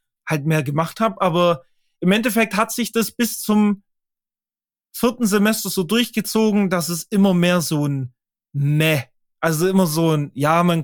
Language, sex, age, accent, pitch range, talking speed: German, male, 20-39, German, 145-185 Hz, 160 wpm